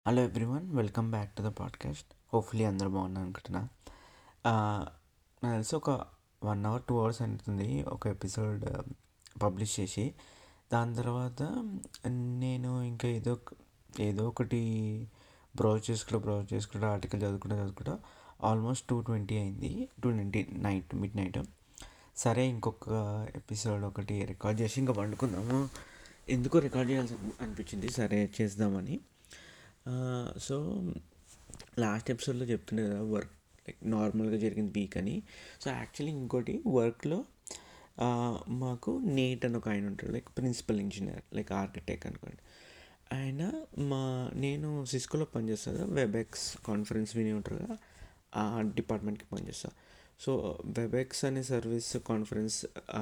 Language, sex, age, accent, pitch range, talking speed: Telugu, male, 30-49, native, 105-125 Hz, 115 wpm